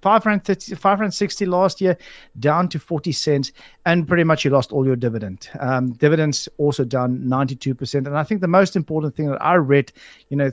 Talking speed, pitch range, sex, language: 215 wpm, 130-160 Hz, male, English